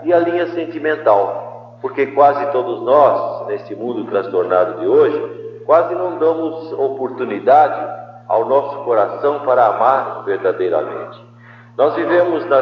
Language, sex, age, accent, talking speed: Portuguese, male, 50-69, Brazilian, 125 wpm